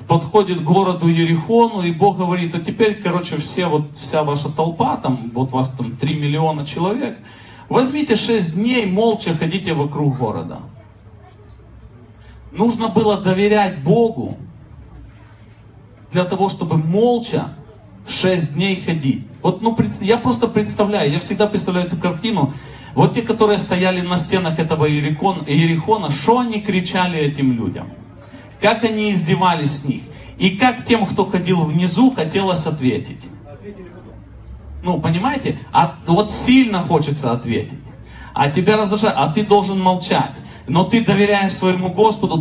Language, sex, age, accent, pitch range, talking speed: Russian, male, 30-49, native, 145-205 Hz, 130 wpm